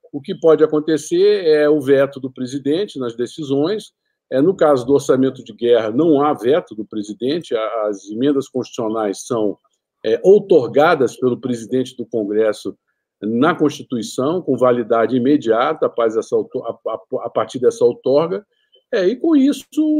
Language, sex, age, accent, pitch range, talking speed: Portuguese, male, 50-69, Brazilian, 120-170 Hz, 130 wpm